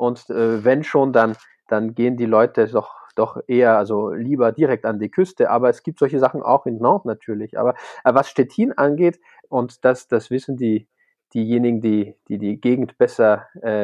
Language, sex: German, male